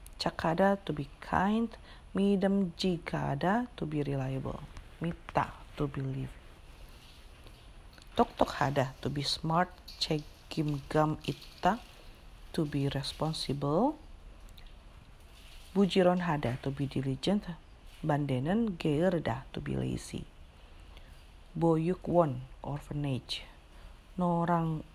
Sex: female